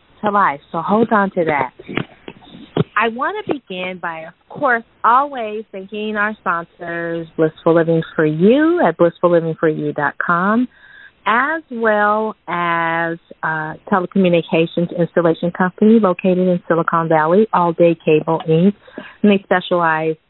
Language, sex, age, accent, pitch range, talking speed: English, female, 30-49, American, 155-190 Hz, 120 wpm